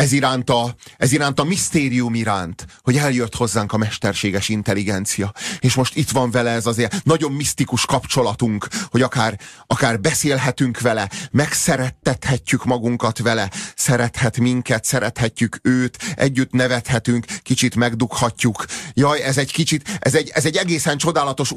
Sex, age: male, 30-49